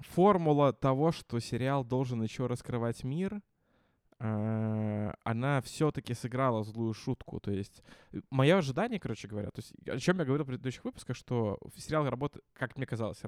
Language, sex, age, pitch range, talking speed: Russian, male, 20-39, 110-145 Hz, 155 wpm